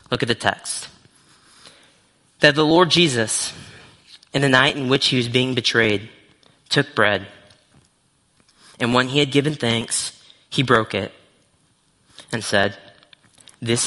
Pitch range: 110-140 Hz